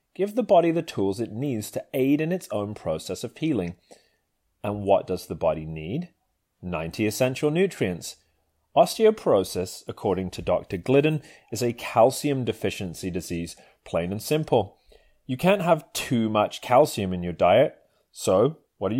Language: English